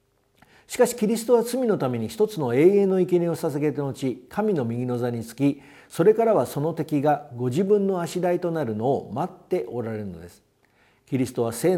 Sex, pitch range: male, 120-185 Hz